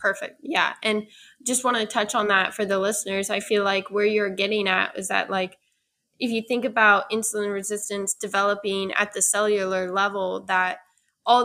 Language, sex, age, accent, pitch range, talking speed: English, female, 10-29, American, 195-225 Hz, 185 wpm